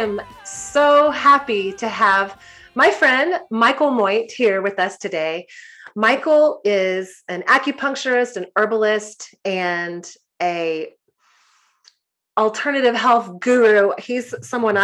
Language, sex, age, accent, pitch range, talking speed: English, female, 30-49, American, 195-250 Hz, 110 wpm